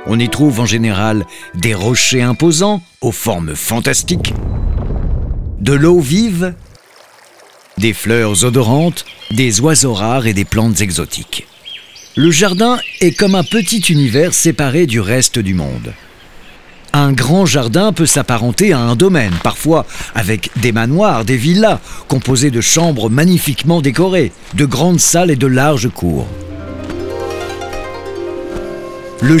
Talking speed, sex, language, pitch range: 130 wpm, male, French, 115-170 Hz